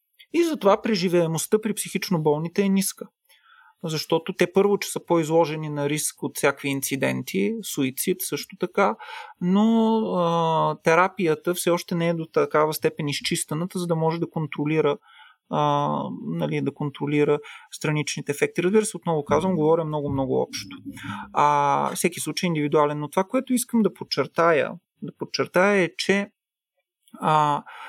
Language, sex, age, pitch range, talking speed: Bulgarian, male, 30-49, 145-190 Hz, 145 wpm